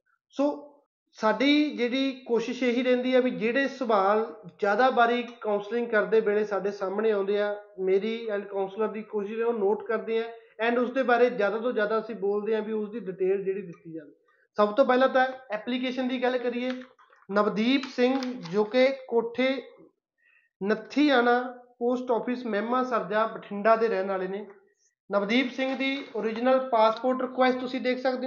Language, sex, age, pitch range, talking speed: Punjabi, male, 30-49, 215-255 Hz, 145 wpm